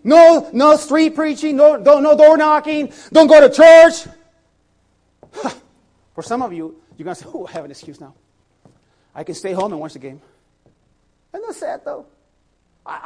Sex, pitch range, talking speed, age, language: male, 210-305 Hz, 190 wpm, 30-49, English